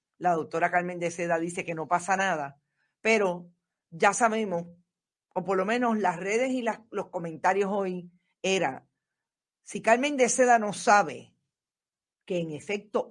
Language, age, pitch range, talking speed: Spanish, 50-69, 165-220 Hz, 150 wpm